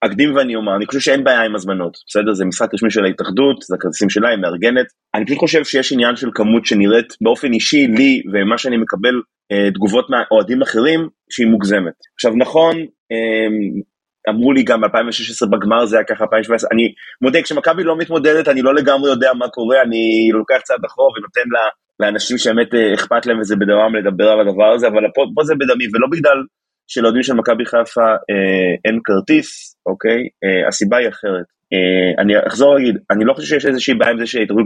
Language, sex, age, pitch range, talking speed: Hebrew, male, 30-49, 105-140 Hz, 190 wpm